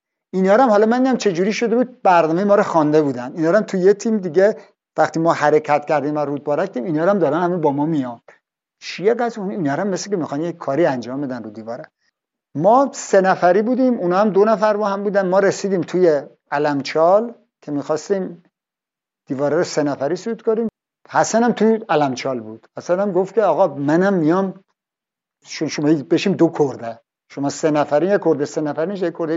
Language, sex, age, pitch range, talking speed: Persian, male, 50-69, 145-195 Hz, 180 wpm